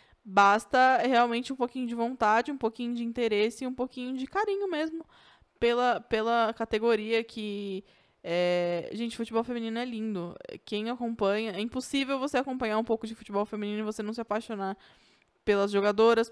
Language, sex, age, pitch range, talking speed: Portuguese, female, 20-39, 210-245 Hz, 160 wpm